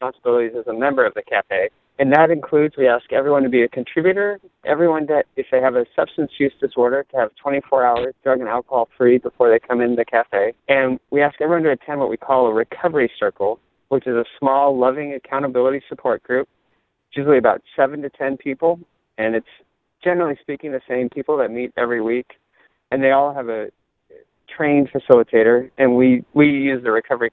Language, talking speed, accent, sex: English, 200 wpm, American, male